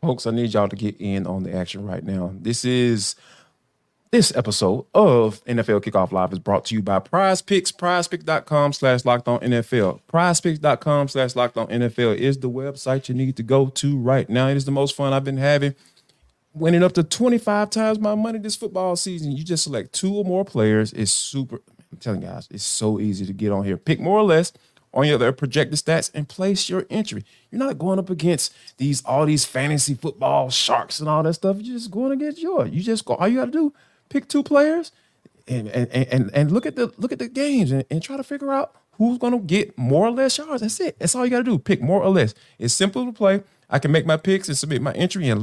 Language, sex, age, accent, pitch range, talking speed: English, male, 30-49, American, 120-195 Hz, 240 wpm